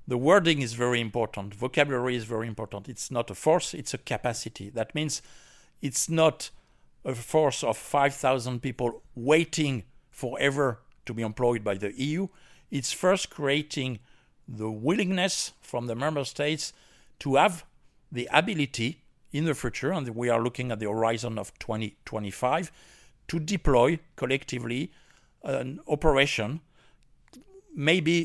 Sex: male